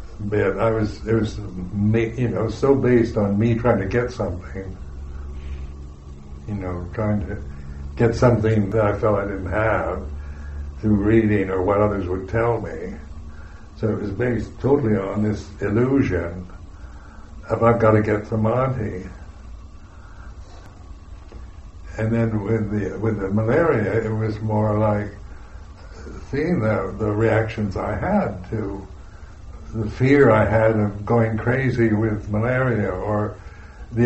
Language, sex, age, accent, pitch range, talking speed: English, male, 60-79, American, 80-110 Hz, 140 wpm